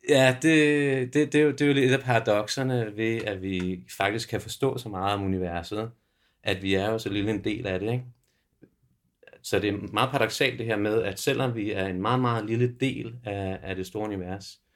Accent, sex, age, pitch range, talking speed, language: native, male, 40-59, 95-115 Hz, 230 wpm, Danish